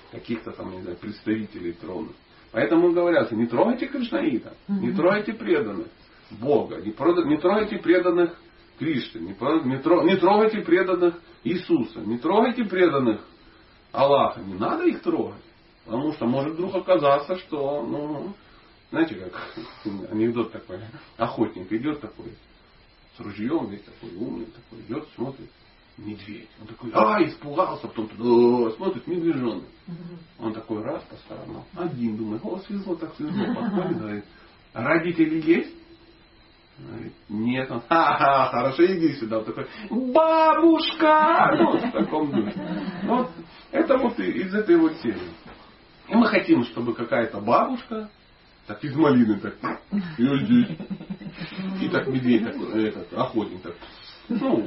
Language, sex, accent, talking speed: Russian, male, native, 130 wpm